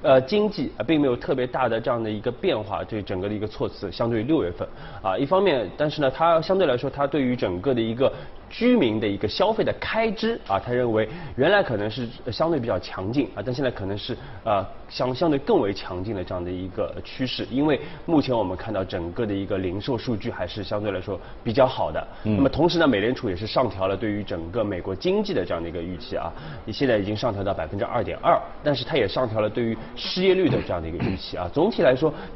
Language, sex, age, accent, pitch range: Chinese, male, 20-39, native, 100-135 Hz